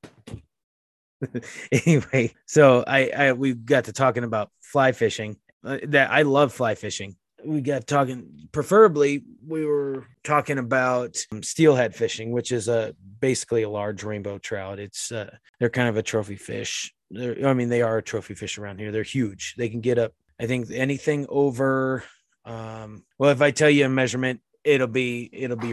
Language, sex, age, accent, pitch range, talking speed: English, male, 30-49, American, 110-140 Hz, 175 wpm